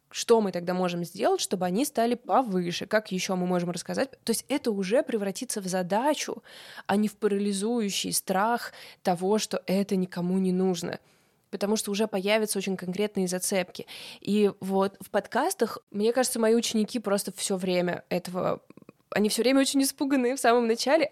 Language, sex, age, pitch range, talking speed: Russian, female, 20-39, 185-230 Hz, 170 wpm